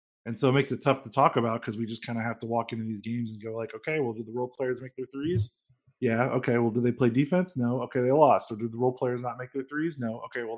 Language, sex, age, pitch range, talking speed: English, male, 20-39, 115-140 Hz, 310 wpm